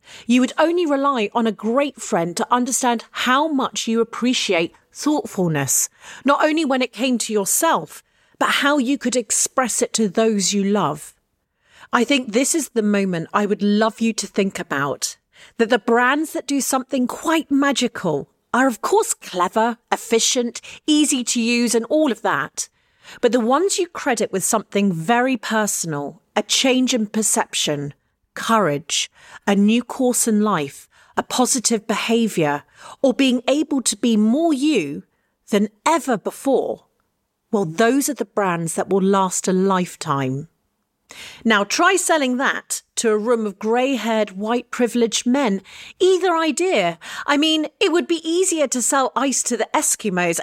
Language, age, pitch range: English, 40-59, 205-275 Hz